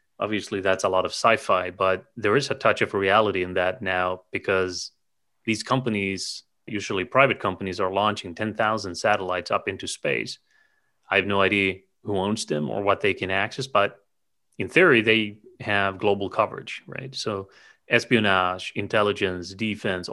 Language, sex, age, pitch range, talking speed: English, male, 30-49, 95-110 Hz, 160 wpm